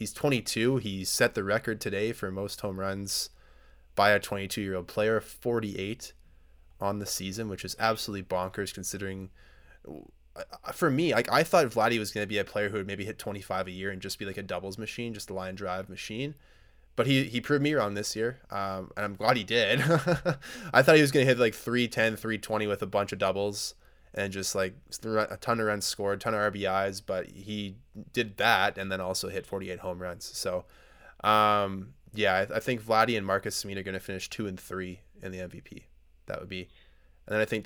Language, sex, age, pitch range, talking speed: English, male, 20-39, 95-110 Hz, 215 wpm